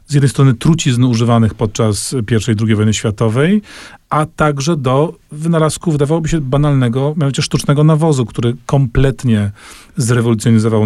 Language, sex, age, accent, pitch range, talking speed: Polish, male, 40-59, native, 115-140 Hz, 135 wpm